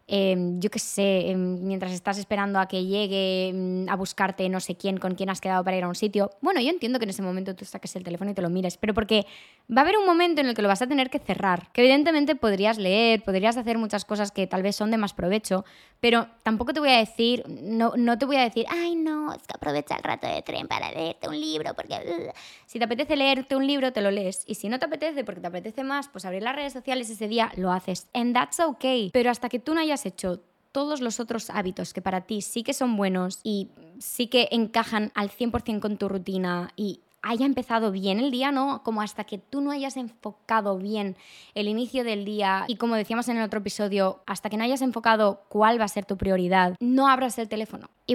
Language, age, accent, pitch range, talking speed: Spanish, 20-39, Spanish, 195-245 Hz, 245 wpm